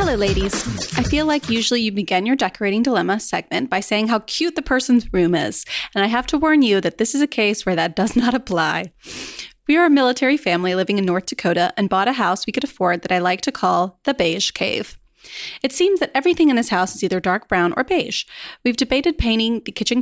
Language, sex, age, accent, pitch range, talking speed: English, female, 20-39, American, 190-255 Hz, 235 wpm